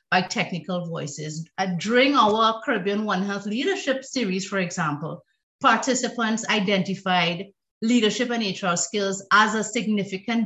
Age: 50-69